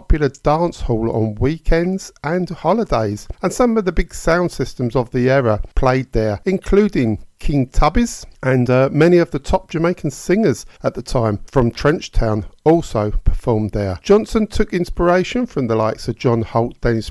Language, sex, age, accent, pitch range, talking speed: English, male, 50-69, British, 110-170 Hz, 170 wpm